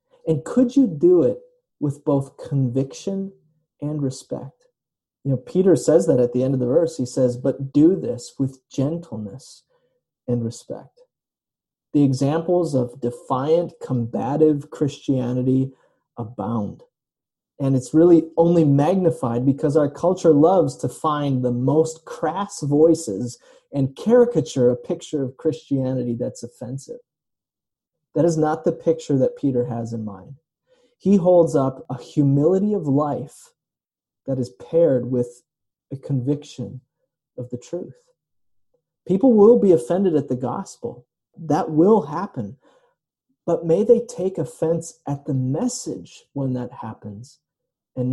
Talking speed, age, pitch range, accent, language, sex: 135 wpm, 30-49, 130-170 Hz, American, English, male